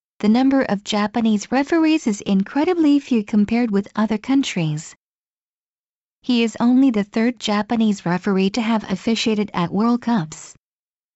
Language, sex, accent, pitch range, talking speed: English, female, American, 185-235 Hz, 135 wpm